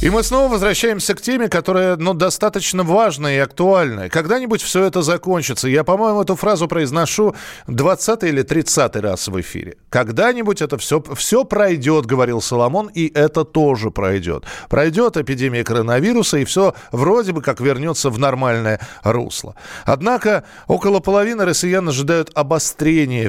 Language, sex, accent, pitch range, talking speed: Russian, male, native, 130-185 Hz, 145 wpm